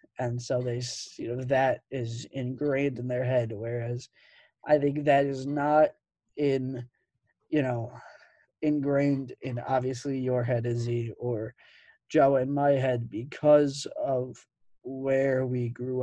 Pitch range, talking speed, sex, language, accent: 120-140 Hz, 135 wpm, male, English, American